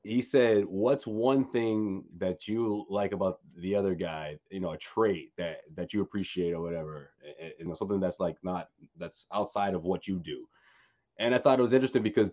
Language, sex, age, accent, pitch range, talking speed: English, male, 30-49, American, 95-130 Hz, 200 wpm